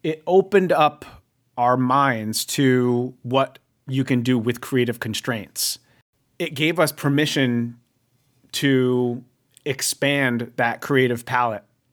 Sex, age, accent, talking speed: male, 30-49, American, 110 wpm